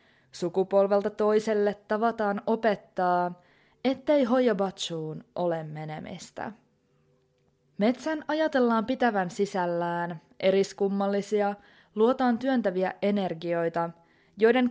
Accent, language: native, Finnish